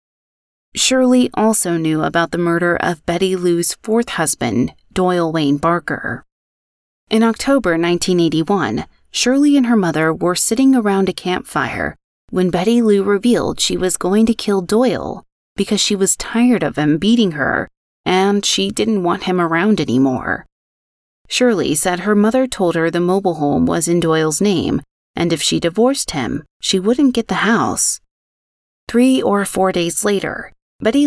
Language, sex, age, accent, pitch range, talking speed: English, female, 30-49, American, 160-210 Hz, 155 wpm